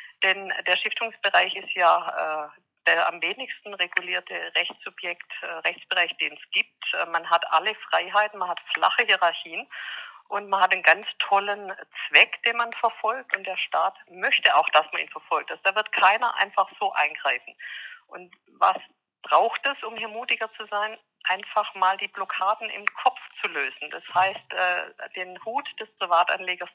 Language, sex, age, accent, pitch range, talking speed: German, female, 50-69, German, 180-215 Hz, 170 wpm